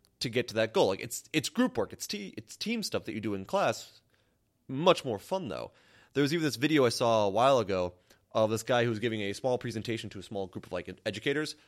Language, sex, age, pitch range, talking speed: English, male, 30-49, 100-140 Hz, 255 wpm